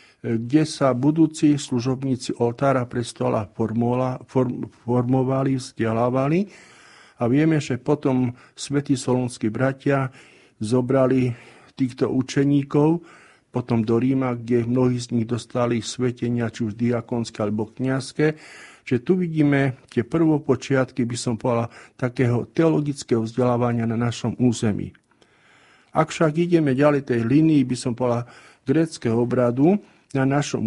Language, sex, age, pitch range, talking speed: Slovak, male, 50-69, 120-145 Hz, 115 wpm